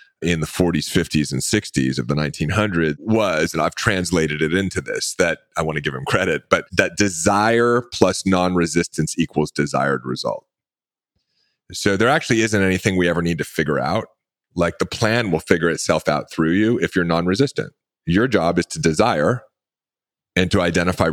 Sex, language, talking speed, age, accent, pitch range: male, English, 175 wpm, 30-49, American, 75-100 Hz